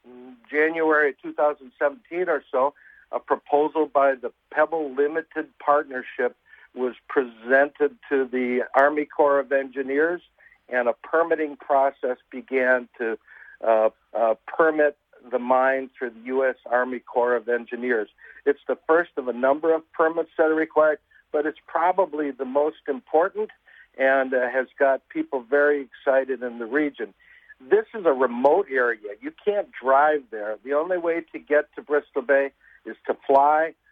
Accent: American